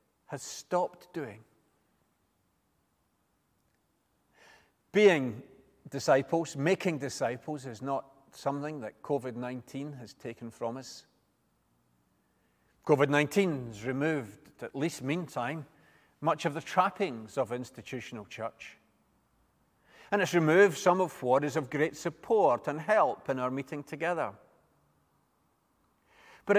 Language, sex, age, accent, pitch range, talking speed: English, male, 40-59, British, 130-170 Hz, 110 wpm